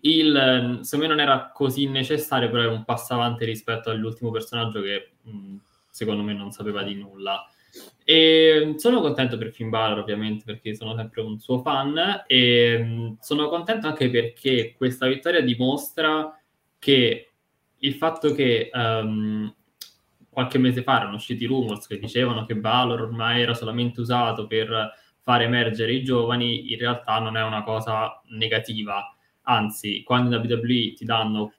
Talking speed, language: 150 wpm, Italian